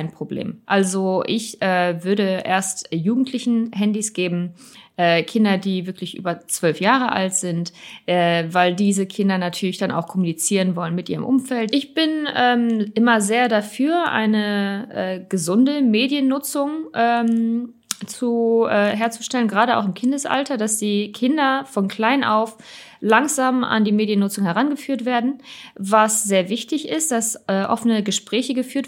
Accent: German